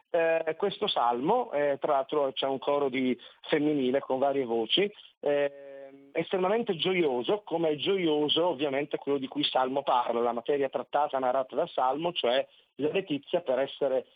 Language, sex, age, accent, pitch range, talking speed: Italian, male, 40-59, native, 135-170 Hz, 155 wpm